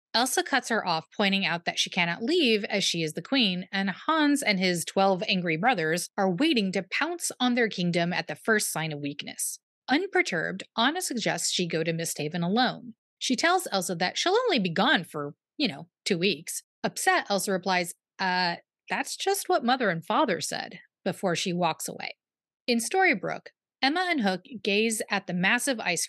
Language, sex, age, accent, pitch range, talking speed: English, female, 30-49, American, 180-260 Hz, 190 wpm